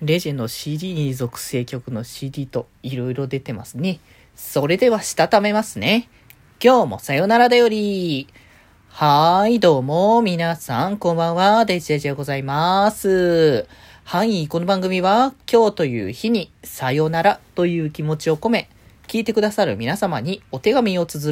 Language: Japanese